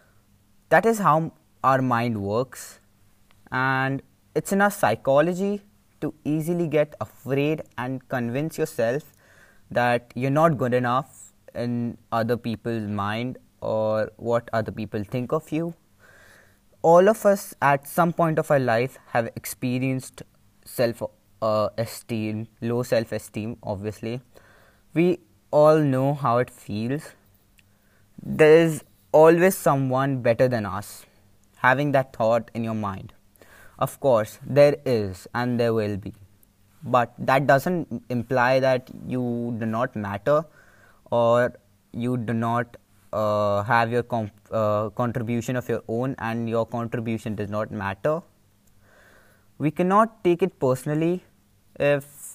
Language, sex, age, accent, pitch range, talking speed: English, male, 20-39, Indian, 105-145 Hz, 125 wpm